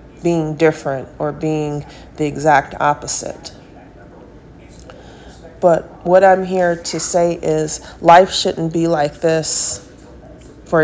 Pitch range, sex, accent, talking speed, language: 155-170 Hz, female, American, 110 wpm, English